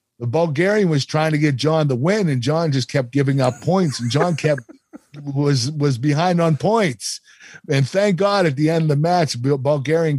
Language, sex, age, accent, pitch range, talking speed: English, male, 50-69, American, 120-155 Hz, 200 wpm